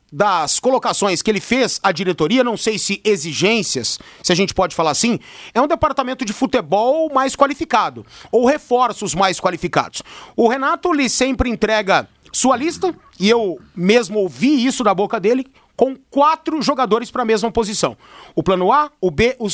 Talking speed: 170 wpm